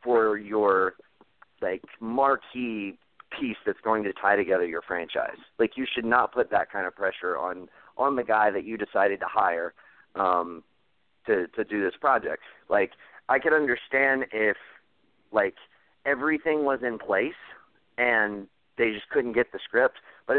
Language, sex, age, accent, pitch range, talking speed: English, male, 30-49, American, 100-120 Hz, 160 wpm